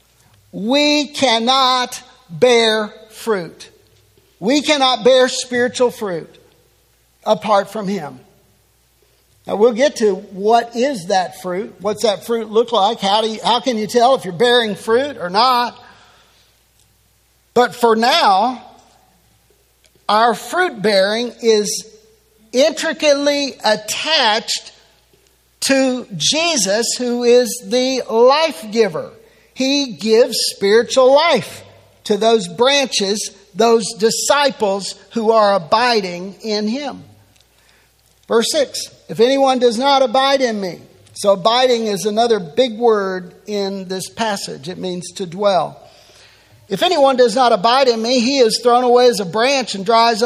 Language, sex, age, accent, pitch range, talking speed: English, male, 50-69, American, 210-255 Hz, 125 wpm